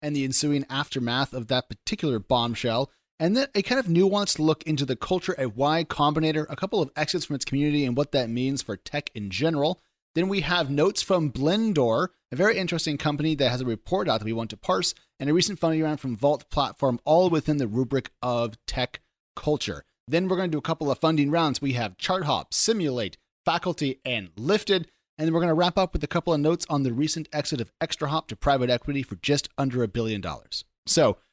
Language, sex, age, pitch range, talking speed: English, male, 30-49, 120-160 Hz, 220 wpm